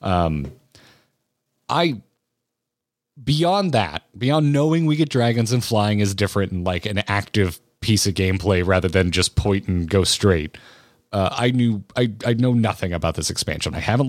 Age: 30-49